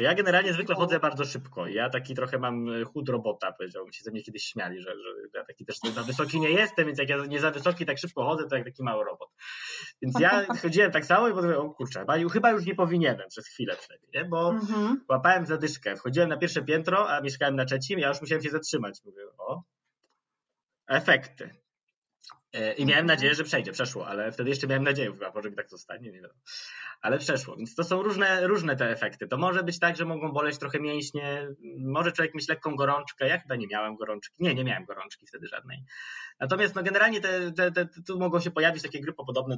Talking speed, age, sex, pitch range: 215 wpm, 20-39, male, 130-185 Hz